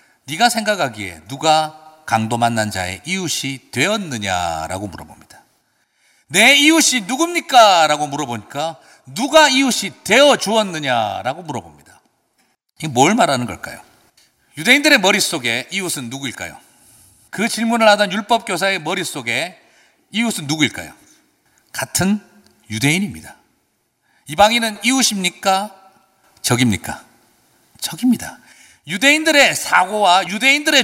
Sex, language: male, Korean